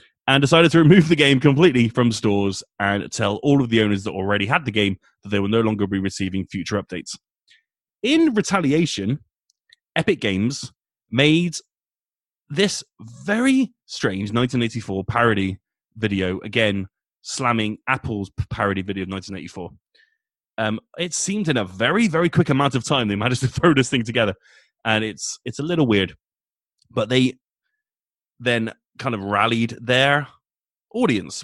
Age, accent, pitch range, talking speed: 30-49, British, 100-145 Hz, 150 wpm